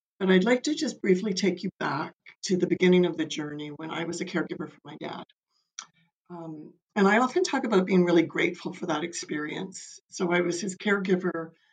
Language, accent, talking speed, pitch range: English, American, 205 wpm, 160-190 Hz